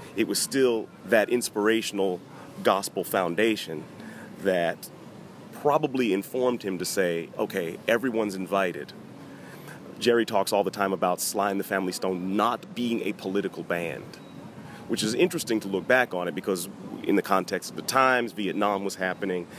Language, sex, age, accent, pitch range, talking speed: English, male, 30-49, American, 95-110 Hz, 155 wpm